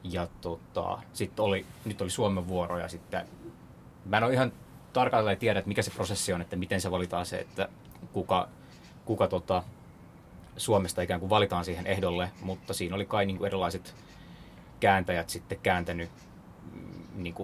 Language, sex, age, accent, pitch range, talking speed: Finnish, male, 20-39, native, 90-100 Hz, 160 wpm